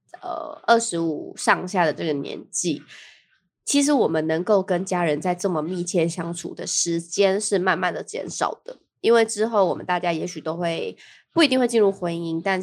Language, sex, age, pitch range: Chinese, female, 20-39, 165-200 Hz